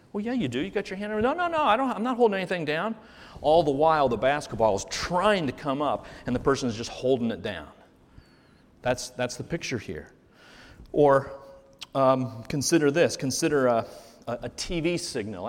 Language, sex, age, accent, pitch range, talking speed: English, male, 40-59, American, 125-165 Hz, 200 wpm